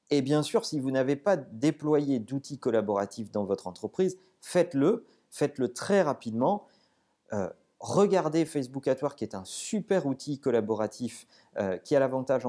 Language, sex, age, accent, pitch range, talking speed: French, male, 40-59, French, 120-165 Hz, 155 wpm